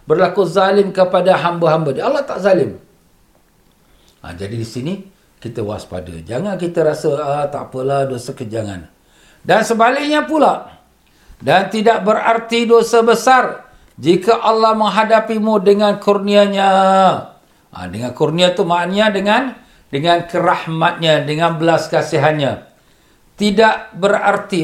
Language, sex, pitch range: Malay, male, 155-225 Hz